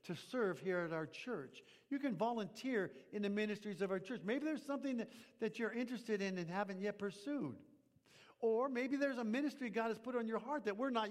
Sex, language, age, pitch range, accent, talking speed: male, English, 50-69, 180-245 Hz, American, 220 wpm